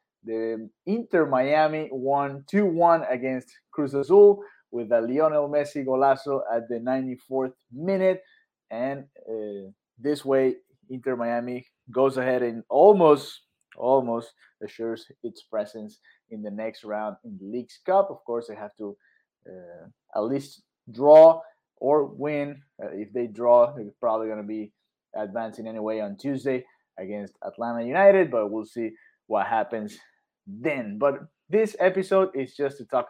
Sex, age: male, 20-39